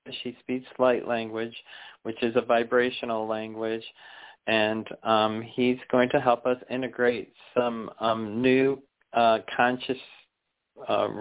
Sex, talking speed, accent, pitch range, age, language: male, 125 wpm, American, 110-125 Hz, 40-59, English